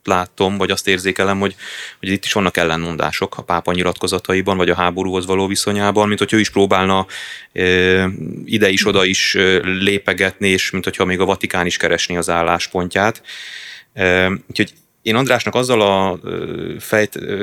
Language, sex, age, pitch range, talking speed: Hungarian, male, 30-49, 95-105 Hz, 150 wpm